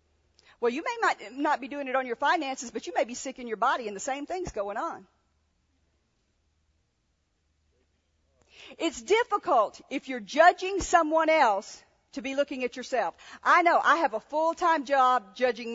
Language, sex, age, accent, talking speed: English, female, 50-69, American, 170 wpm